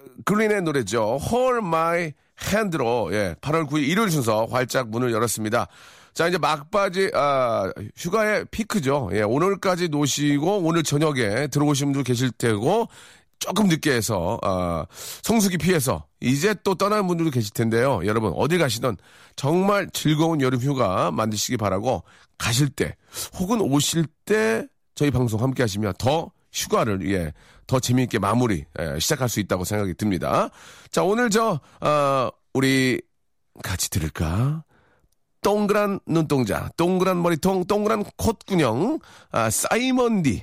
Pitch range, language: 115-185 Hz, Korean